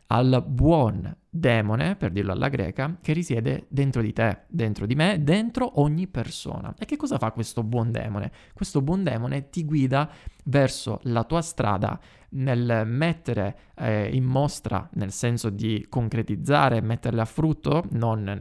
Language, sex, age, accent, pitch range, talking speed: Italian, male, 20-39, native, 110-145 Hz, 155 wpm